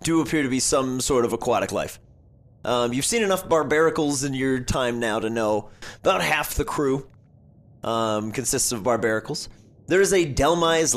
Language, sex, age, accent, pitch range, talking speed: English, male, 30-49, American, 110-155 Hz, 175 wpm